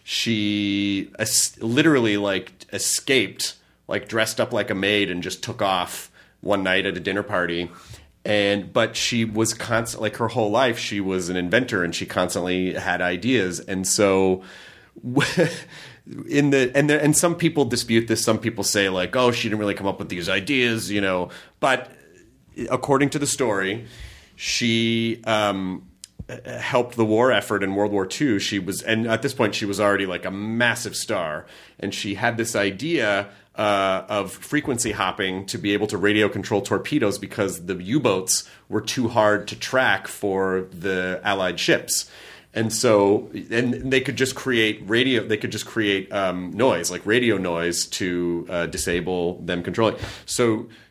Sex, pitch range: male, 95-115 Hz